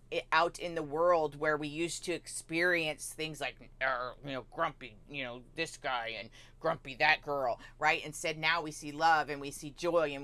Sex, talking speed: female, 195 wpm